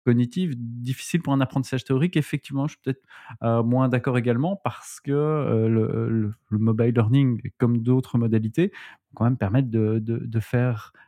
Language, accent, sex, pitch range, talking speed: French, French, male, 115-140 Hz, 175 wpm